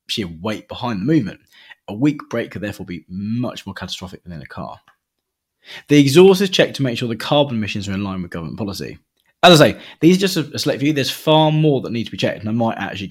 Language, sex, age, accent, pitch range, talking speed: English, male, 20-39, British, 105-150 Hz, 250 wpm